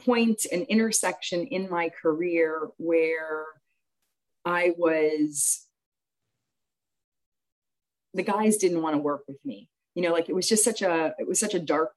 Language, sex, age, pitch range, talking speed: English, female, 40-59, 155-205 Hz, 150 wpm